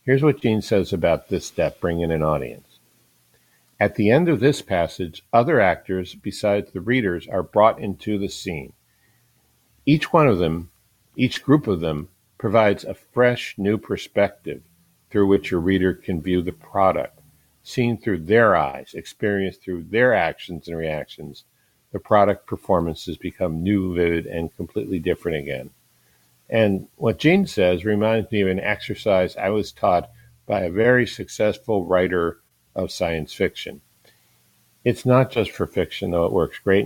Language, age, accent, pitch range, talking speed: English, 50-69, American, 85-110 Hz, 160 wpm